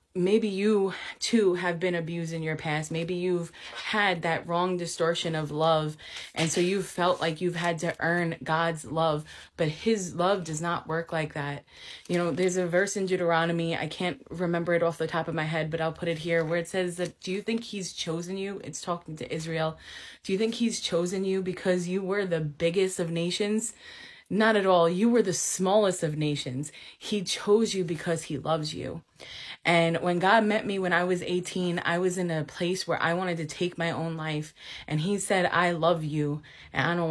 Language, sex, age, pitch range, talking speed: English, female, 20-39, 160-185 Hz, 215 wpm